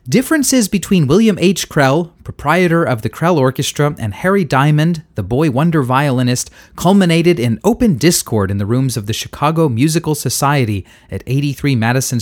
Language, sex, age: English, male, 30-49